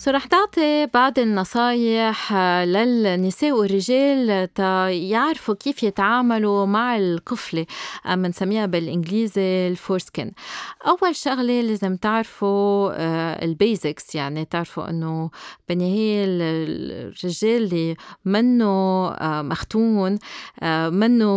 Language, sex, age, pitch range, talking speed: Arabic, female, 30-49, 180-225 Hz, 80 wpm